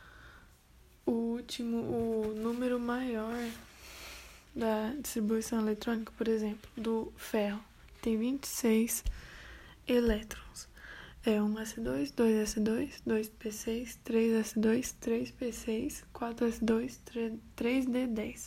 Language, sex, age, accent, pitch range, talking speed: Portuguese, female, 10-29, Brazilian, 210-235 Hz, 75 wpm